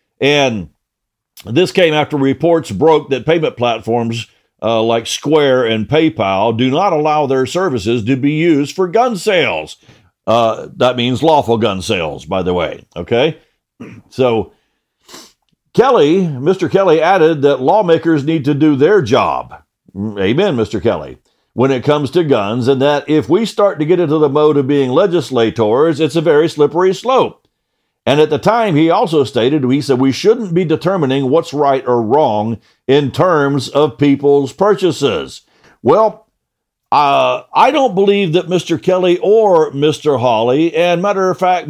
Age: 50-69